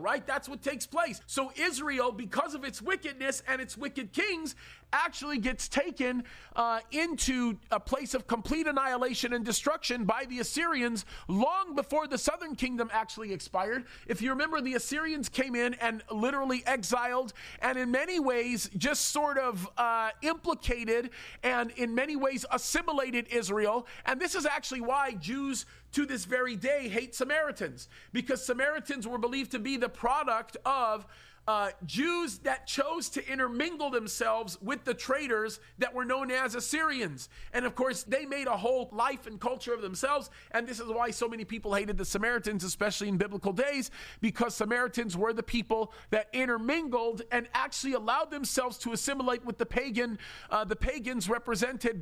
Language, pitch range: English, 230-275 Hz